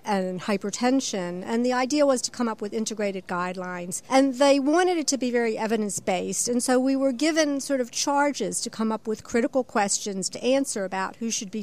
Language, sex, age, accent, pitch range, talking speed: English, female, 50-69, American, 205-265 Hz, 205 wpm